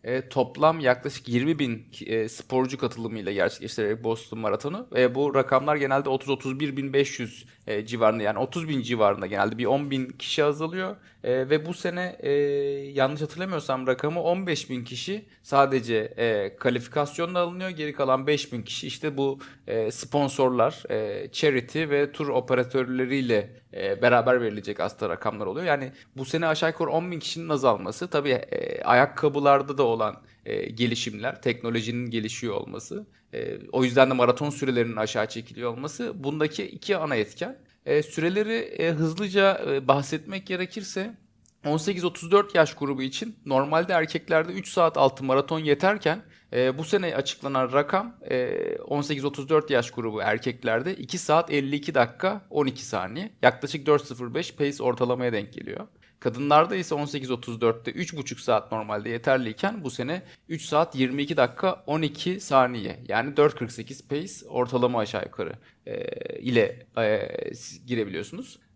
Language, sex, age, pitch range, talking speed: Turkish, male, 30-49, 125-165 Hz, 130 wpm